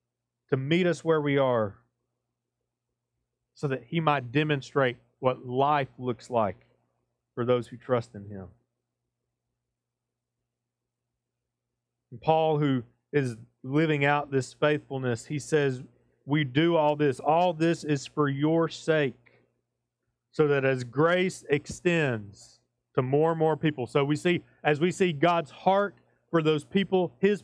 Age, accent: 40-59, American